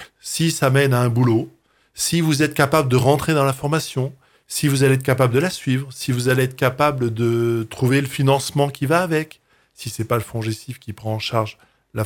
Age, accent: 20-39, French